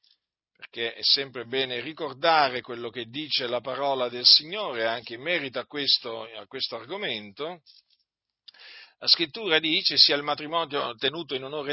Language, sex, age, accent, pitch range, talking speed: Italian, male, 50-69, native, 135-185 Hz, 150 wpm